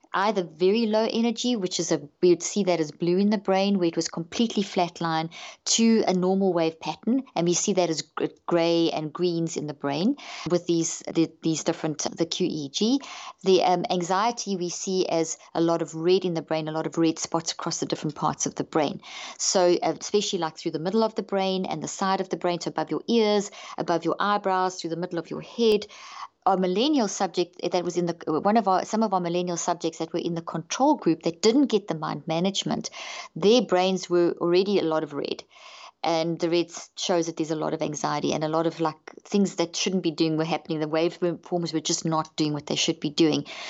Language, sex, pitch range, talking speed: English, female, 165-190 Hz, 230 wpm